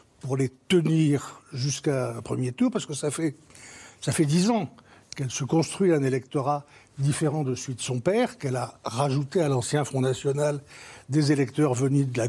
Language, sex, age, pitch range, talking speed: French, male, 60-79, 135-185 Hz, 185 wpm